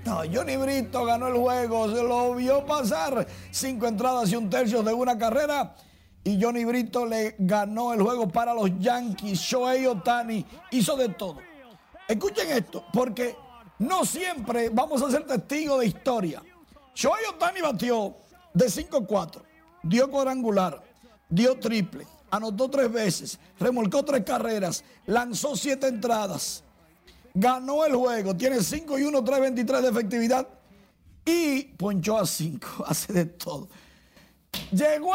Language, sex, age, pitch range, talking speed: Spanish, male, 60-79, 215-270 Hz, 135 wpm